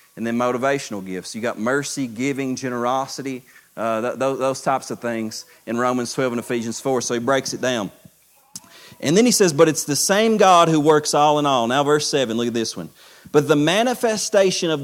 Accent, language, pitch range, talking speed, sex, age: American, English, 130-175 Hz, 200 wpm, male, 40-59